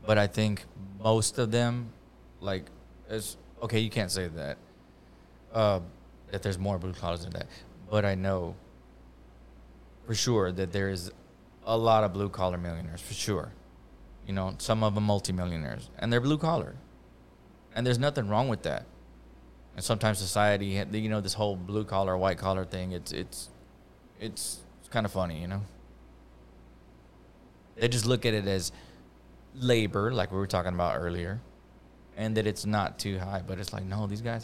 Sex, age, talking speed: male, 20-39, 165 wpm